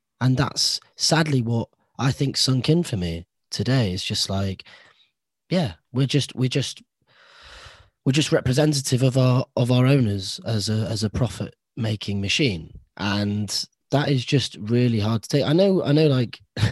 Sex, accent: male, British